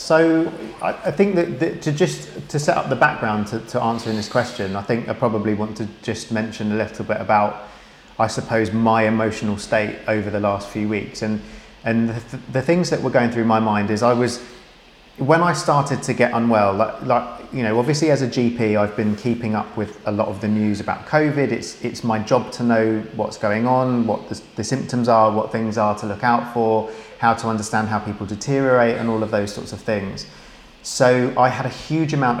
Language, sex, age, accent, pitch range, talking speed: English, male, 30-49, British, 105-120 Hz, 220 wpm